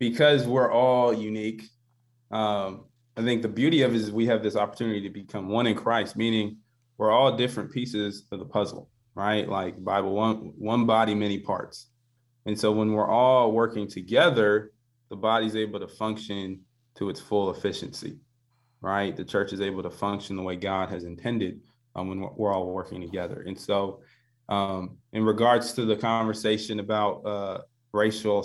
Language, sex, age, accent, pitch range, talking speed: English, male, 20-39, American, 105-120 Hz, 175 wpm